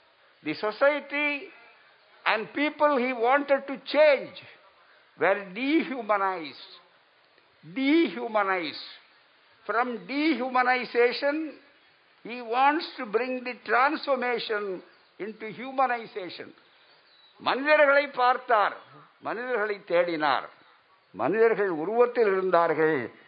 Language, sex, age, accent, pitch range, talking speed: Tamil, male, 60-79, native, 190-260 Hz, 70 wpm